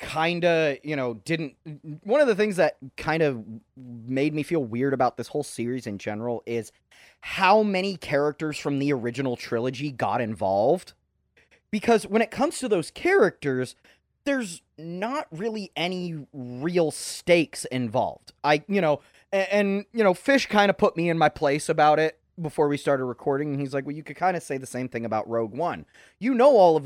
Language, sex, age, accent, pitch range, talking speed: English, male, 30-49, American, 135-190 Hz, 190 wpm